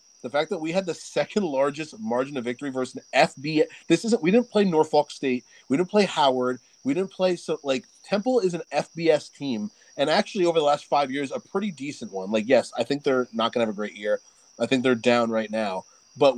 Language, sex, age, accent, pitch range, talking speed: English, male, 30-49, American, 120-160 Hz, 240 wpm